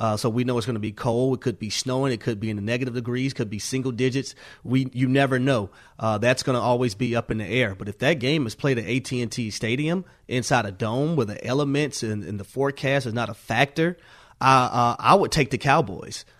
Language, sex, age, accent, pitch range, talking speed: English, male, 30-49, American, 115-130 Hz, 250 wpm